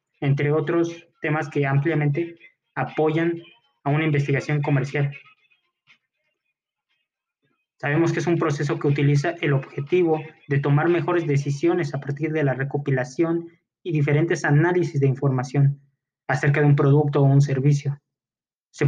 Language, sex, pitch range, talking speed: Spanish, male, 140-165 Hz, 130 wpm